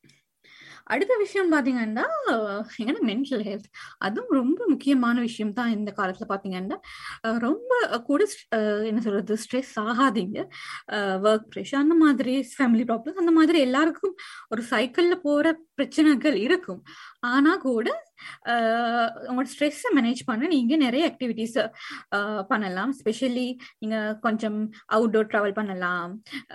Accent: Indian